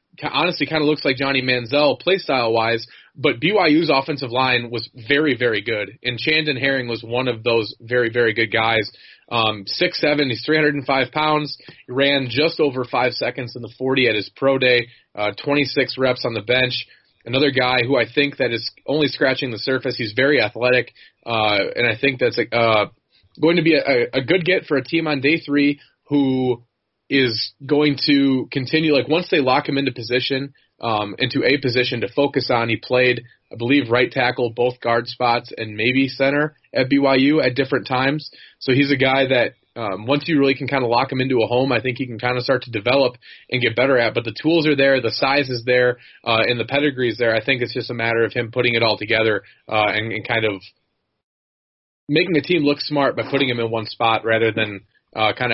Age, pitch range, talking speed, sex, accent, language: 20-39, 115-140 Hz, 210 wpm, male, American, English